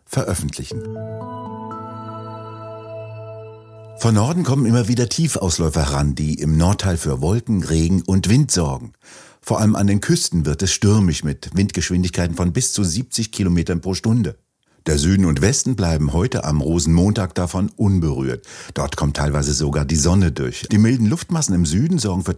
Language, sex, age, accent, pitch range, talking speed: German, male, 60-79, German, 80-105 Hz, 155 wpm